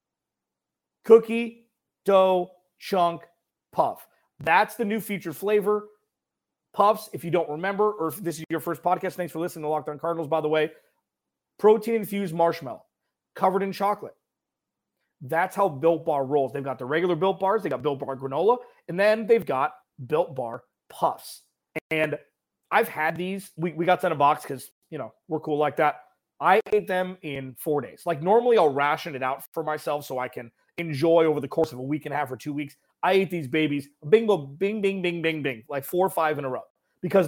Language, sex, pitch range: English, male, 150-200 Hz